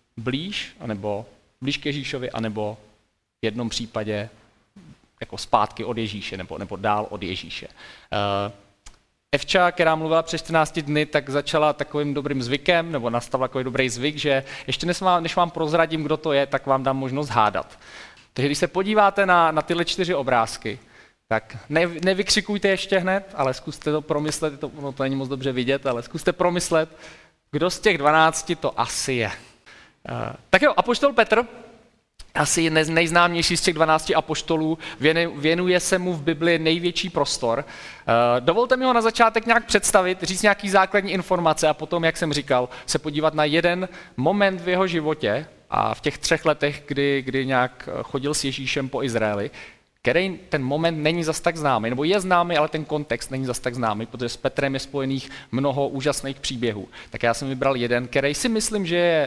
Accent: native